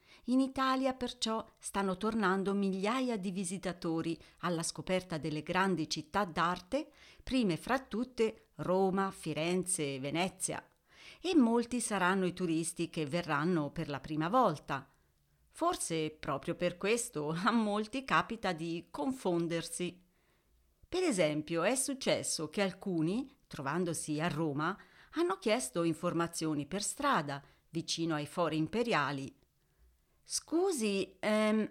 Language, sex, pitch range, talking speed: Italian, female, 165-245 Hz, 115 wpm